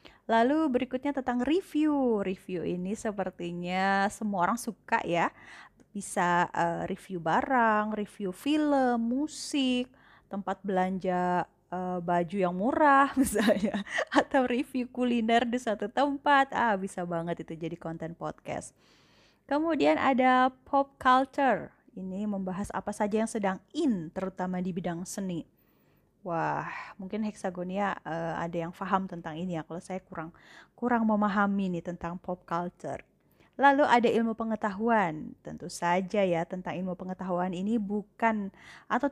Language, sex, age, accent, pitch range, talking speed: Indonesian, female, 20-39, native, 180-250 Hz, 130 wpm